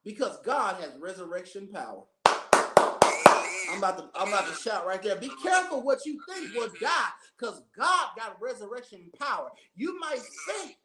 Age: 30-49